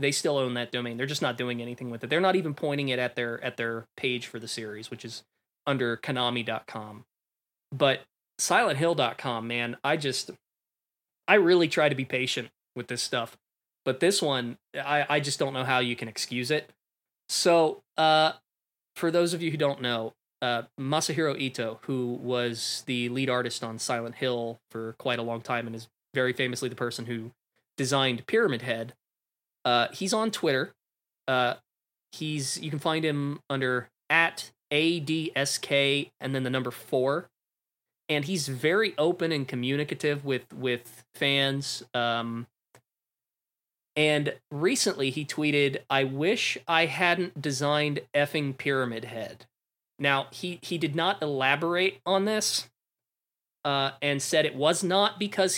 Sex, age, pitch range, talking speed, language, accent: male, 20-39, 120-155 Hz, 160 wpm, English, American